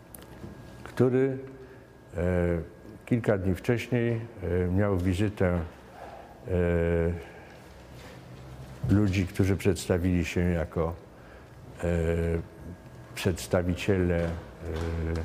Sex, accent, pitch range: male, native, 90-120 Hz